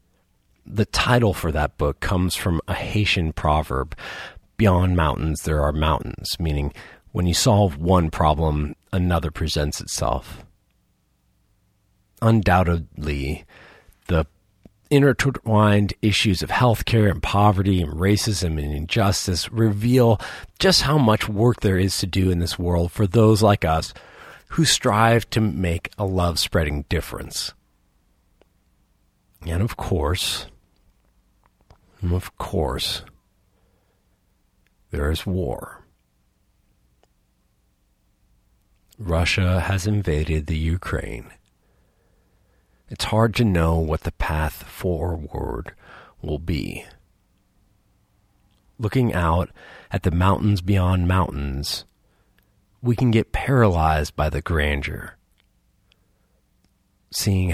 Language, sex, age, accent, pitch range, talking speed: English, male, 40-59, American, 80-100 Hz, 100 wpm